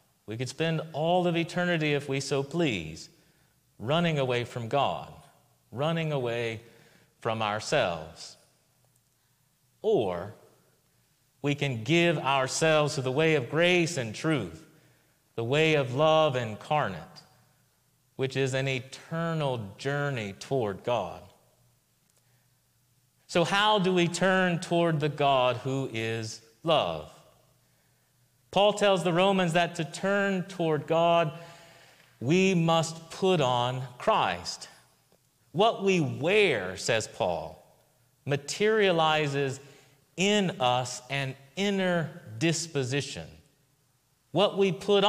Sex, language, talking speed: male, English, 110 wpm